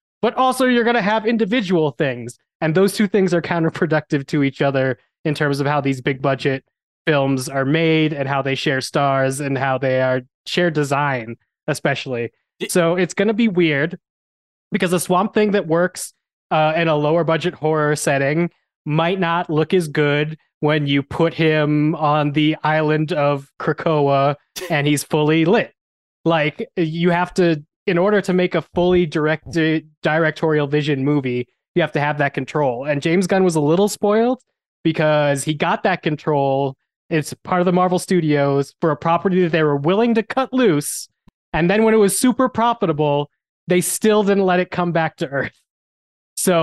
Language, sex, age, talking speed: English, male, 20-39, 180 wpm